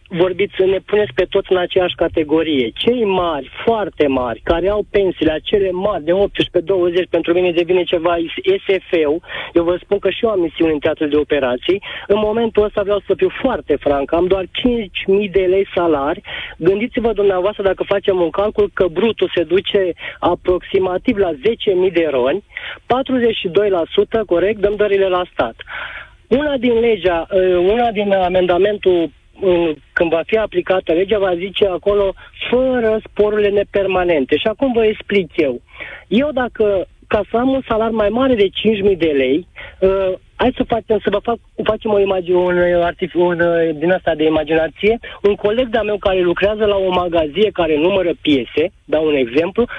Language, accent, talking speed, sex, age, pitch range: Romanian, native, 165 wpm, male, 20-39, 175-220 Hz